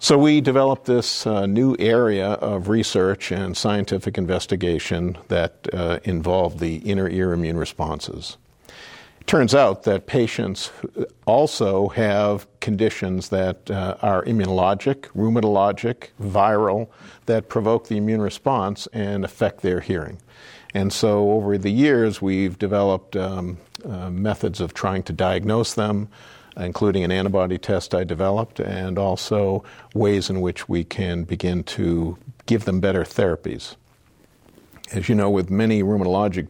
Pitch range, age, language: 90-105 Hz, 50-69, English